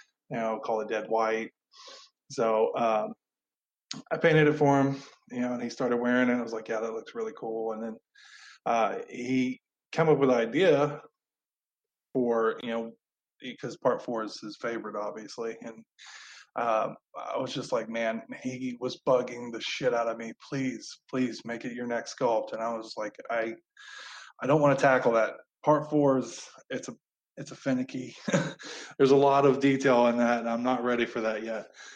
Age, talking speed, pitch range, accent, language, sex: 20-39, 190 wpm, 115-140 Hz, American, English, male